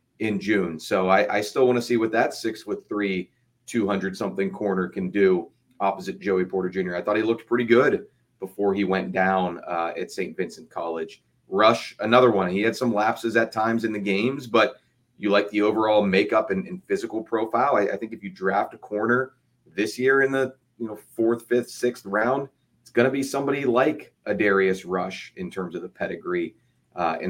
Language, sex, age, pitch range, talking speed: English, male, 30-49, 100-125 Hz, 200 wpm